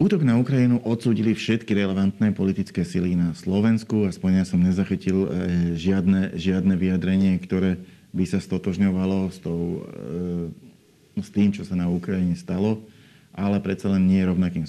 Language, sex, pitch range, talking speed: Slovak, male, 95-105 Hz, 145 wpm